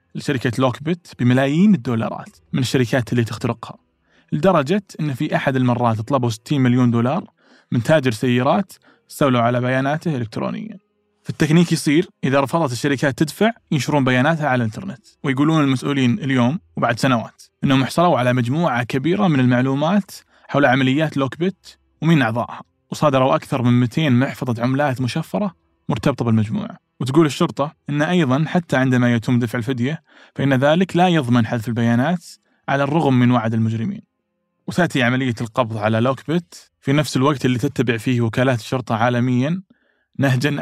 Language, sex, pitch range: Arabic, male, 120-155 Hz